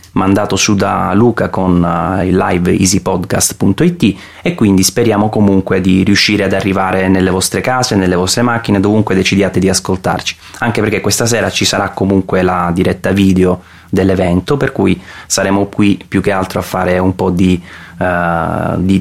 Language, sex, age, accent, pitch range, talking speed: Italian, male, 20-39, native, 95-105 Hz, 165 wpm